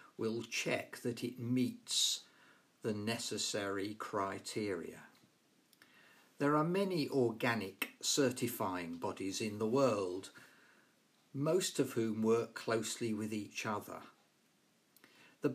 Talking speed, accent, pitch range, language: 100 wpm, British, 110-145 Hz, English